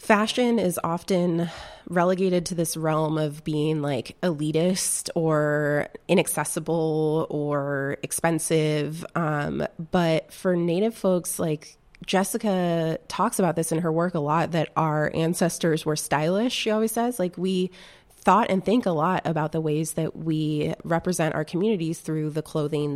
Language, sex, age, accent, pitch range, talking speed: English, female, 20-39, American, 150-175 Hz, 145 wpm